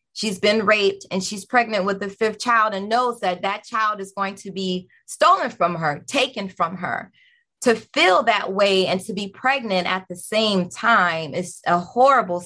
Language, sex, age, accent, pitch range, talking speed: English, female, 20-39, American, 180-230 Hz, 195 wpm